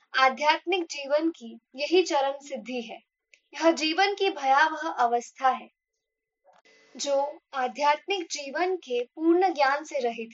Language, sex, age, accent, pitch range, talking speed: Hindi, female, 10-29, native, 255-340 Hz, 130 wpm